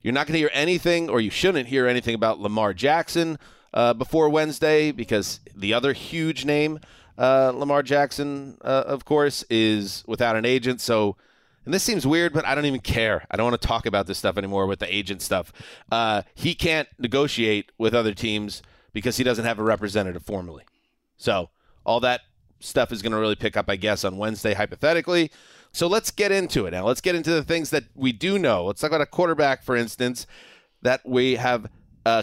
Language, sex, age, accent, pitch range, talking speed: English, male, 30-49, American, 105-145 Hz, 205 wpm